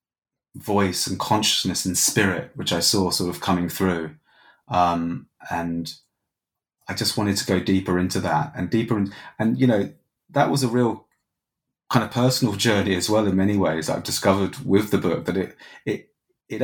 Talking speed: 175 wpm